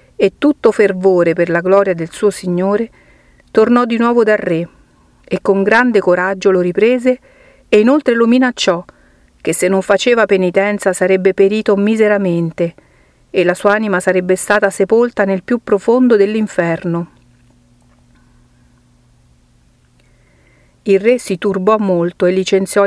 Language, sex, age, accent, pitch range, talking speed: Italian, female, 50-69, native, 175-215 Hz, 130 wpm